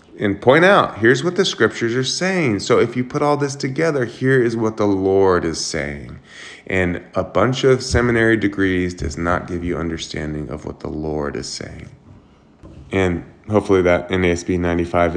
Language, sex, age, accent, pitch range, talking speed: English, male, 20-39, American, 85-105 Hz, 180 wpm